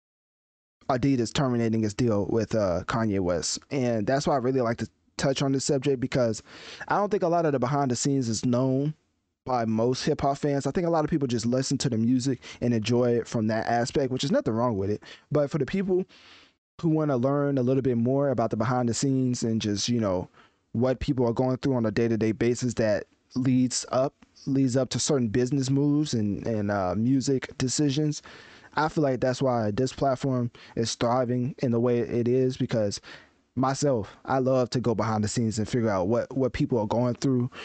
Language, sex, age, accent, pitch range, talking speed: English, male, 20-39, American, 115-140 Hz, 215 wpm